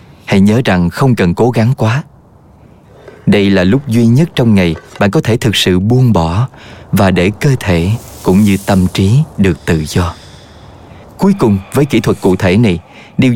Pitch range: 95-140 Hz